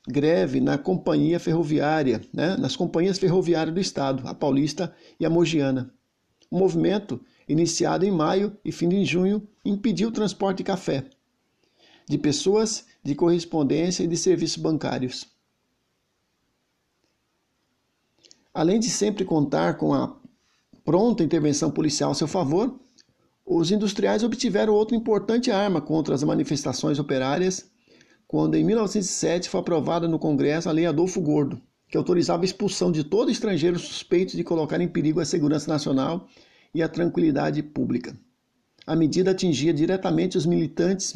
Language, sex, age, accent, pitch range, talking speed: Portuguese, male, 60-79, Brazilian, 150-190 Hz, 140 wpm